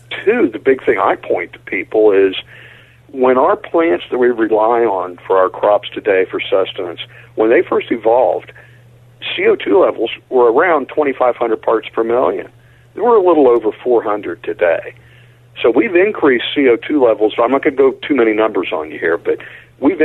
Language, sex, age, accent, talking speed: English, male, 50-69, American, 175 wpm